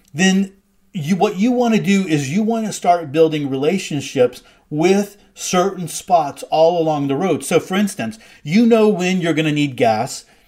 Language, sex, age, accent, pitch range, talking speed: English, male, 40-59, American, 145-185 Hz, 185 wpm